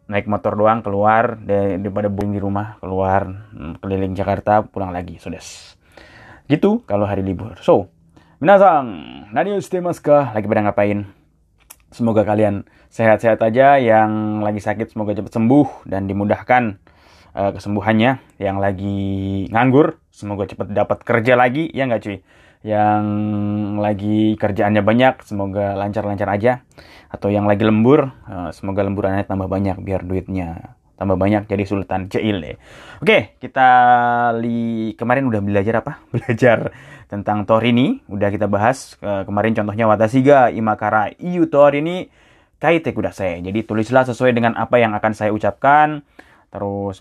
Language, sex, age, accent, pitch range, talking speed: Indonesian, male, 20-39, native, 100-120 Hz, 140 wpm